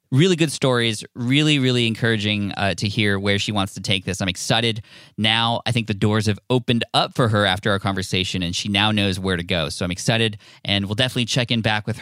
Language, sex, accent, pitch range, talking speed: English, male, American, 105-135 Hz, 235 wpm